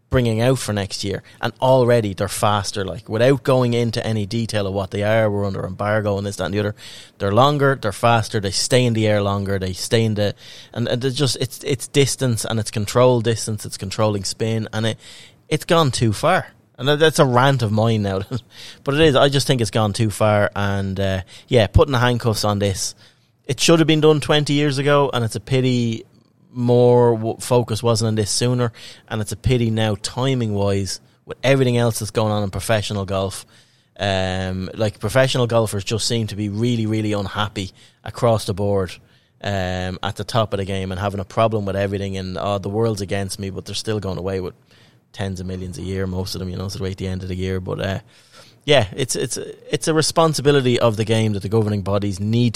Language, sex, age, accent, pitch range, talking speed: English, male, 20-39, Irish, 100-120 Hz, 220 wpm